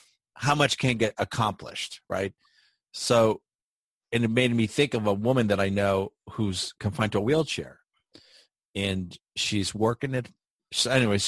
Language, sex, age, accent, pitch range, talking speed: English, male, 40-59, American, 100-125 Hz, 155 wpm